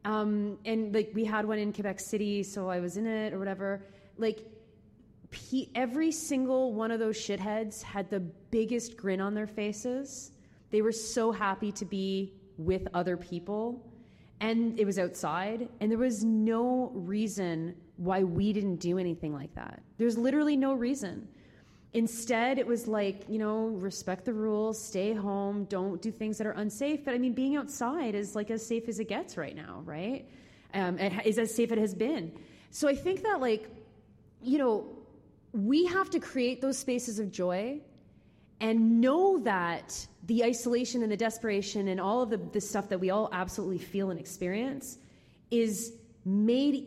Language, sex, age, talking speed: English, female, 20-39, 175 wpm